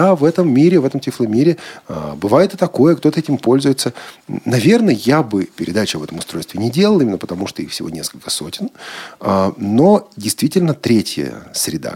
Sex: male